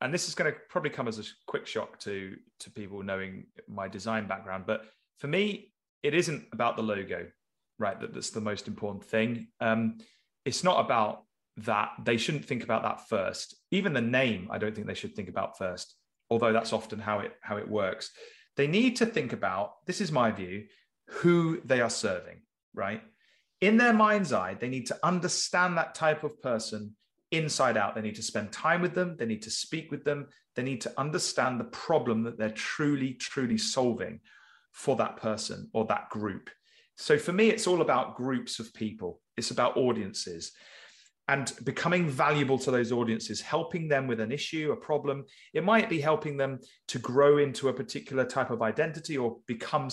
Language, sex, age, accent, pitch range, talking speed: English, male, 30-49, British, 115-185 Hz, 190 wpm